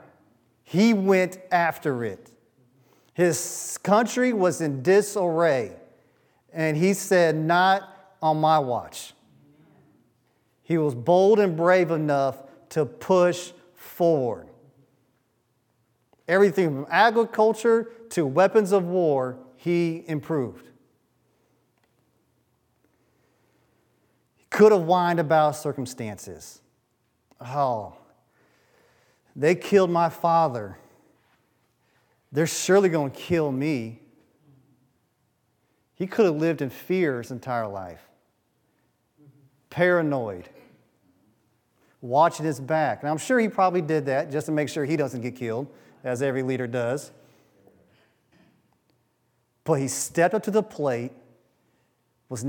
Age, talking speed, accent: 40-59, 105 wpm, American